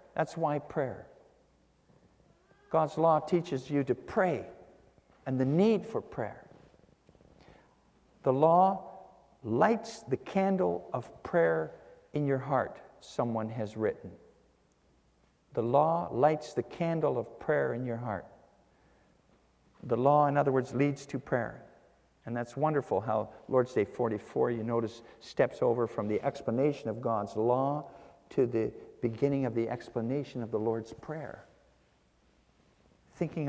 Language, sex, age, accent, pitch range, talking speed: English, male, 50-69, American, 110-145 Hz, 130 wpm